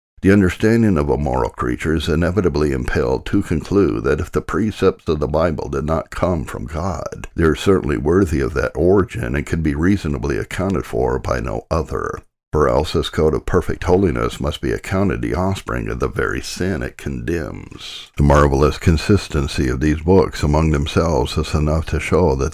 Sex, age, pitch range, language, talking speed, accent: male, 60-79, 75-95 Hz, English, 185 wpm, American